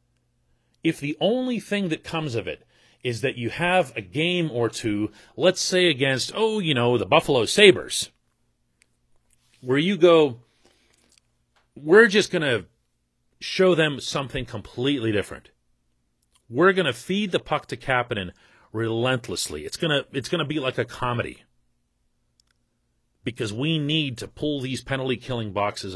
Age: 40-59